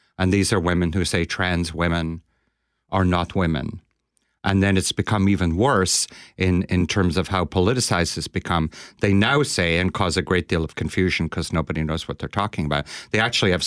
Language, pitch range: English, 85-100 Hz